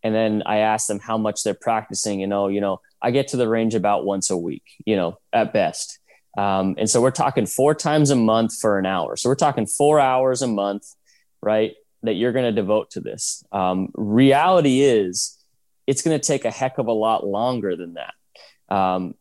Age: 20-39